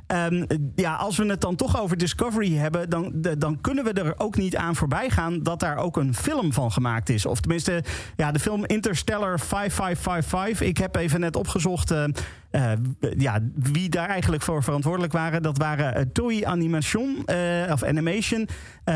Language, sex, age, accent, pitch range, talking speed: Dutch, male, 40-59, Dutch, 145-180 Hz, 185 wpm